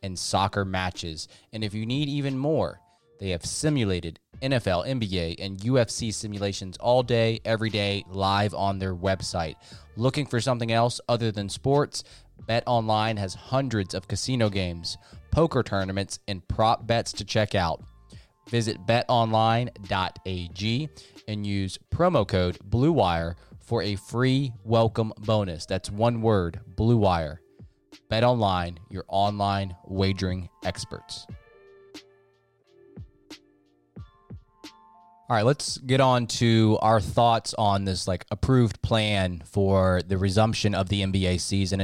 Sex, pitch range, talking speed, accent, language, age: male, 95-115 Hz, 125 wpm, American, English, 20-39